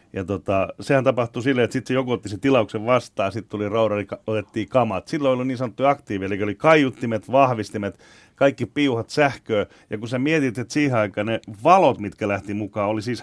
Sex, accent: male, native